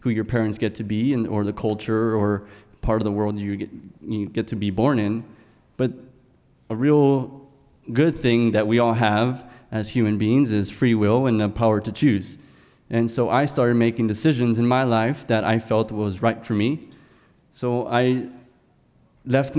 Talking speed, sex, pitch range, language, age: 190 wpm, male, 110-130 Hz, English, 20-39